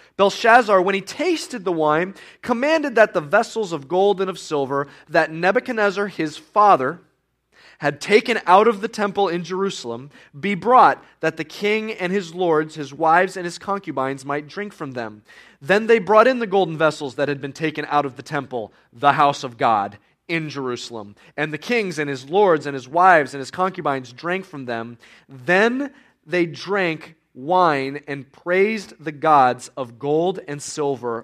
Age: 30-49